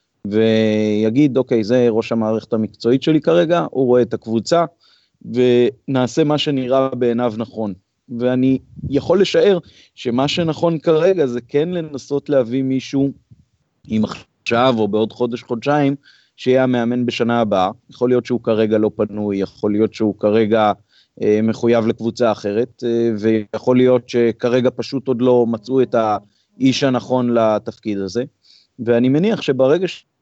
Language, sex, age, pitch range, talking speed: Hebrew, male, 30-49, 110-135 Hz, 135 wpm